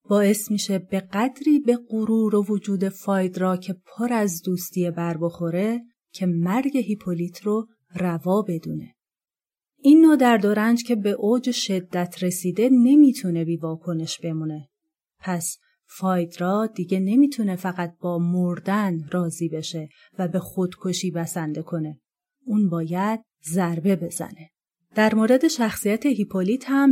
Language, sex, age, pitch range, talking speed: Persian, female, 30-49, 175-225 Hz, 125 wpm